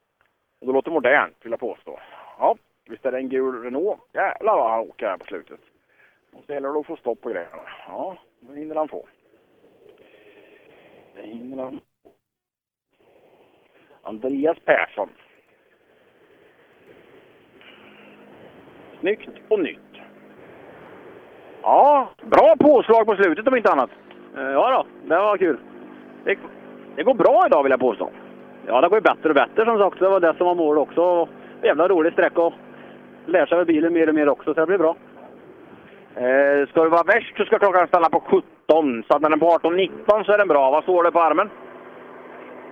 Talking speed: 170 wpm